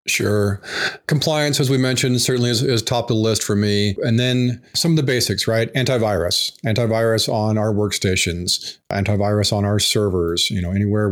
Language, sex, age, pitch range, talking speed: English, male, 40-59, 100-120 Hz, 180 wpm